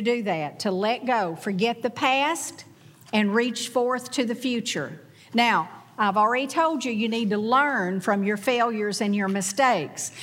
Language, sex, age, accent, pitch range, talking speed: English, female, 50-69, American, 190-245 Hz, 170 wpm